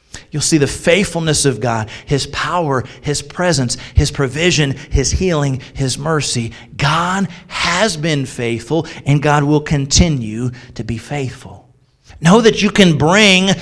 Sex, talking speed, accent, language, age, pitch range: male, 140 wpm, American, English, 40-59, 125-185 Hz